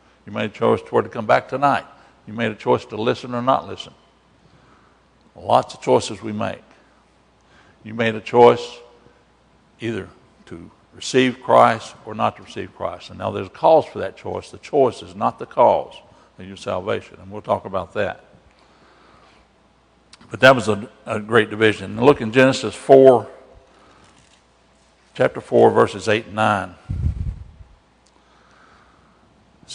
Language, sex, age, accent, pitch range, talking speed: English, male, 60-79, American, 95-115 Hz, 155 wpm